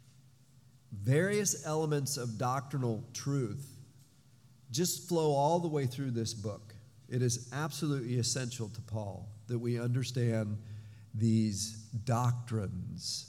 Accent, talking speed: American, 110 wpm